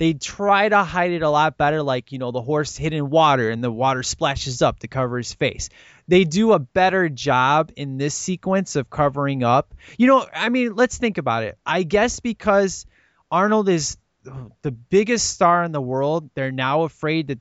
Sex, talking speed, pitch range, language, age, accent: male, 205 wpm, 140-200 Hz, English, 20-39, American